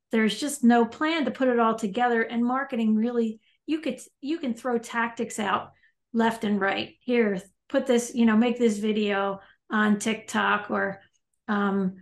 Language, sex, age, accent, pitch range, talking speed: English, female, 40-59, American, 215-255 Hz, 170 wpm